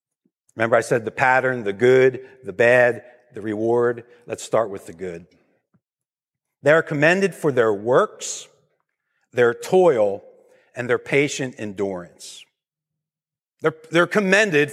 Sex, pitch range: male, 130-190 Hz